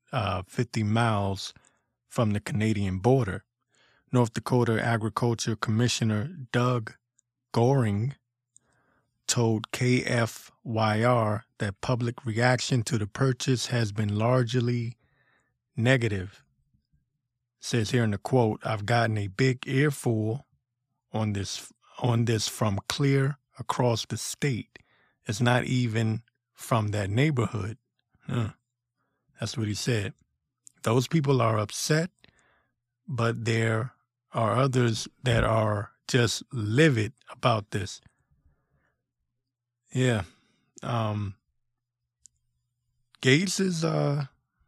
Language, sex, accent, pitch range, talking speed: English, male, American, 110-130 Hz, 100 wpm